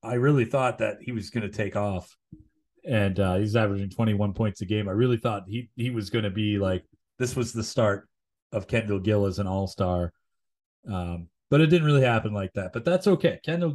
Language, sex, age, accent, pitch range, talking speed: English, male, 30-49, American, 105-145 Hz, 220 wpm